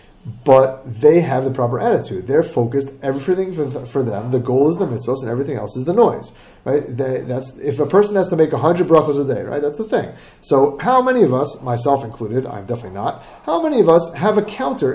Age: 30-49